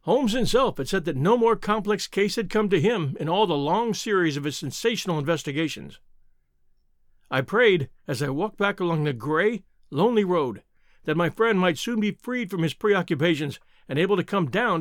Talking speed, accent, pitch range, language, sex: 195 wpm, American, 155-215 Hz, English, male